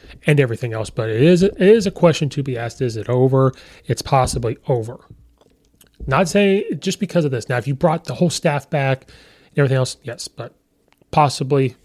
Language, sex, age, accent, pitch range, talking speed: English, male, 30-49, American, 120-150 Hz, 195 wpm